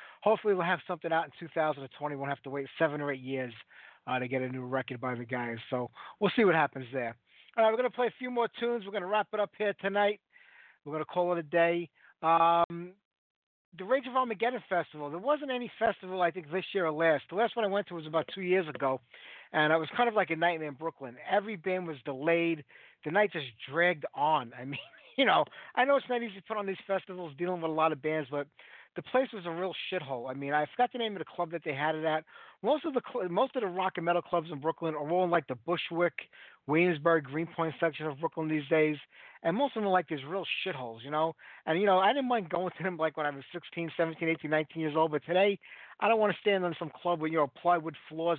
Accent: American